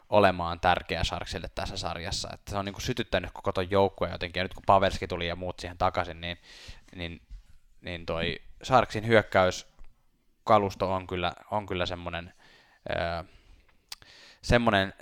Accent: native